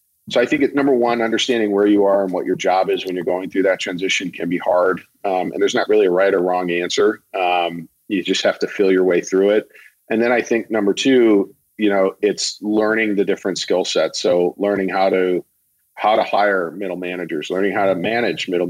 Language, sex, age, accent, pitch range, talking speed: English, male, 40-59, American, 90-105 Hz, 230 wpm